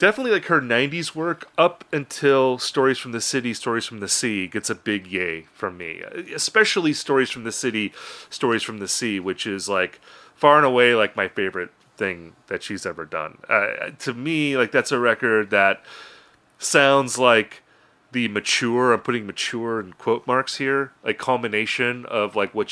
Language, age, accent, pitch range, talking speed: English, 30-49, American, 105-135 Hz, 180 wpm